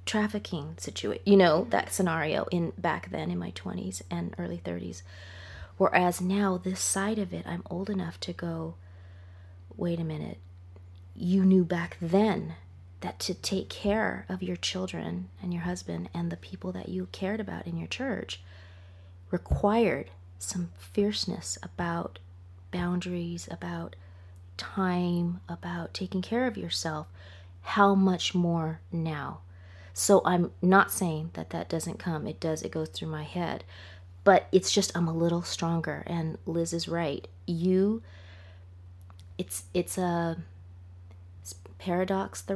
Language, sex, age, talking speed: English, female, 30-49, 145 wpm